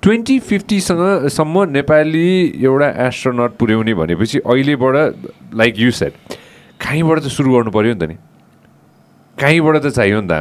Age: 30-49